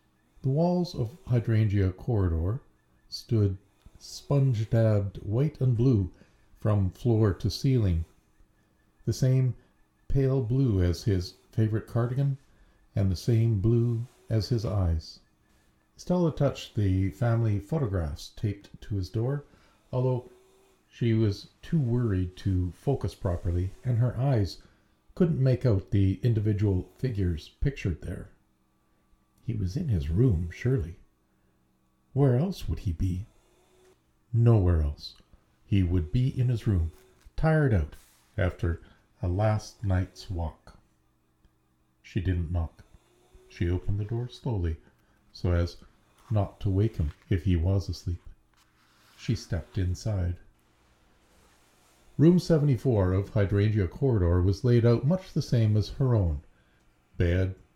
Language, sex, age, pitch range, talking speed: English, male, 50-69, 85-120 Hz, 125 wpm